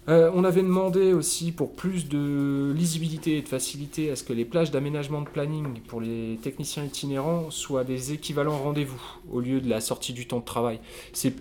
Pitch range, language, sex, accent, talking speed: 115-145 Hz, French, male, French, 200 wpm